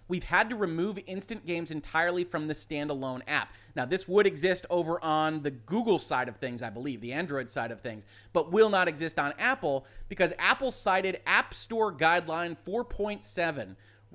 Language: English